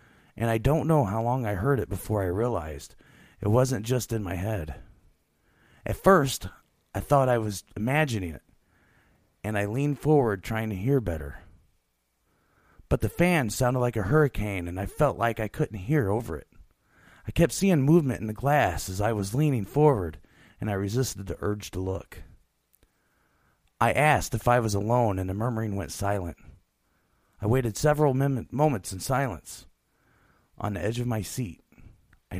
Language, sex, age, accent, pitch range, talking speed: English, male, 40-59, American, 90-135 Hz, 170 wpm